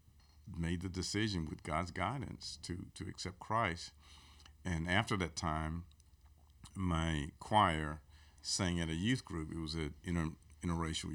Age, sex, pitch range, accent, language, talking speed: 50-69, male, 75-90 Hz, American, English, 135 wpm